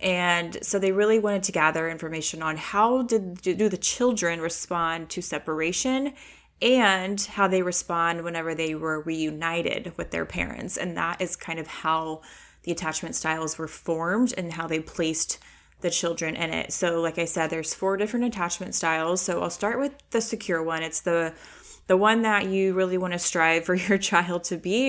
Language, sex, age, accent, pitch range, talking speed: English, female, 20-39, American, 170-210 Hz, 190 wpm